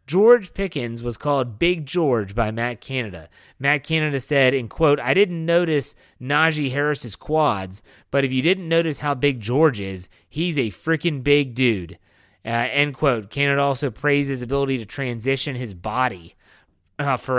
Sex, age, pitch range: male, 30-49, 115-145 Hz